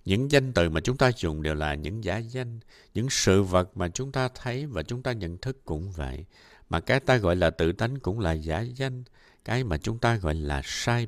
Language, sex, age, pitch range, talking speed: Vietnamese, male, 60-79, 80-120 Hz, 240 wpm